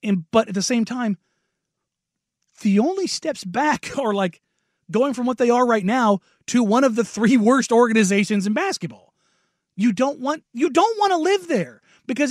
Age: 30-49